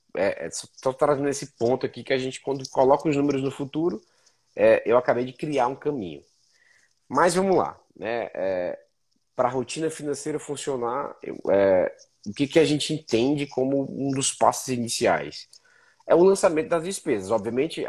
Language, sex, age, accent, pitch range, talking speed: Portuguese, male, 20-39, Brazilian, 115-145 Hz, 175 wpm